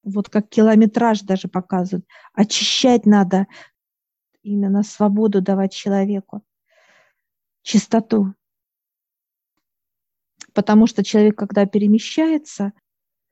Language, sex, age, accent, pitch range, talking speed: Russian, female, 50-69, native, 200-220 Hz, 75 wpm